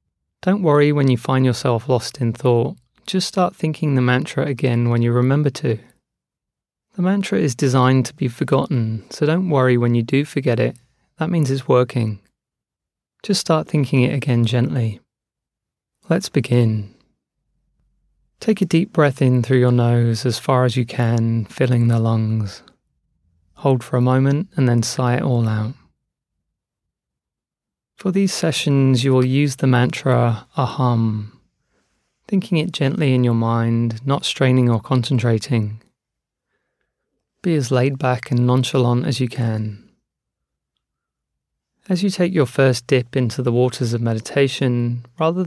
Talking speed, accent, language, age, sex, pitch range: 150 wpm, British, English, 30-49, male, 120-145 Hz